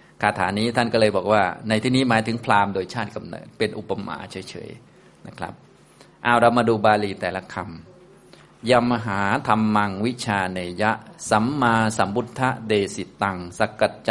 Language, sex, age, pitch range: Thai, male, 20-39, 95-115 Hz